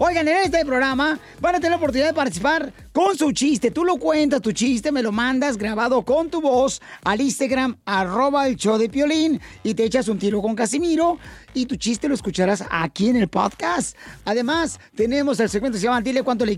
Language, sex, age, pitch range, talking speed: Spanish, male, 40-59, 220-300 Hz, 215 wpm